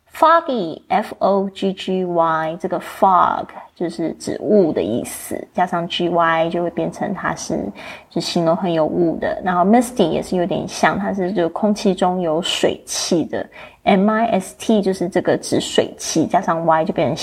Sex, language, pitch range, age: female, Chinese, 175-225 Hz, 20-39